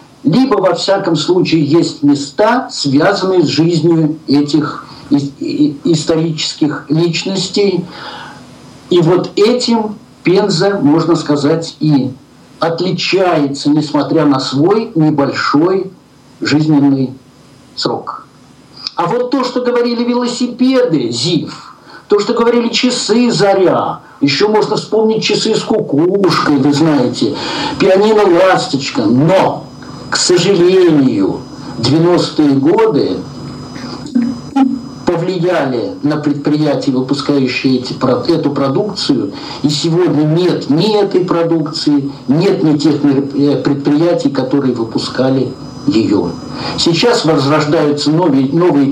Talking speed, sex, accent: 95 wpm, male, native